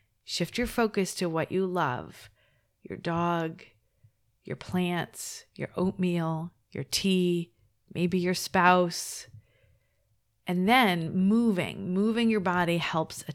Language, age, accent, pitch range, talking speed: English, 40-59, American, 135-190 Hz, 115 wpm